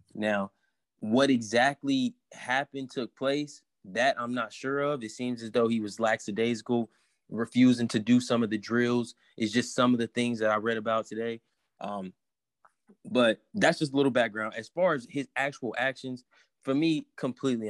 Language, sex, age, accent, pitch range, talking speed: English, male, 20-39, American, 115-135 Hz, 175 wpm